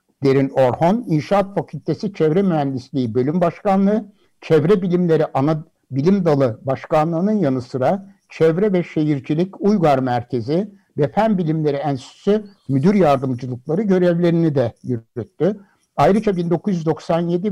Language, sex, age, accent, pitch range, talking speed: Turkish, male, 60-79, native, 135-195 Hz, 110 wpm